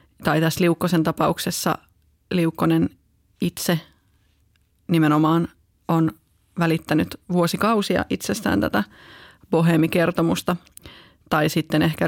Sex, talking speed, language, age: female, 80 wpm, Finnish, 30-49